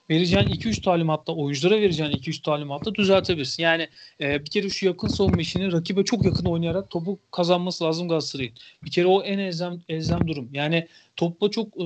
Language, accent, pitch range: Turkish, native, 155-200 Hz